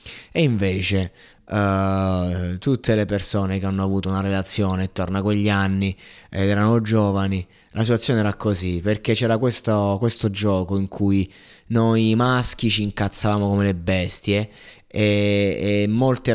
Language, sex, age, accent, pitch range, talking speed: Italian, male, 20-39, native, 95-110 Hz, 140 wpm